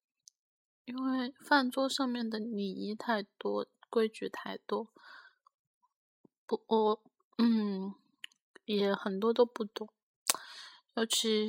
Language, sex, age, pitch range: Chinese, female, 20-39, 210-270 Hz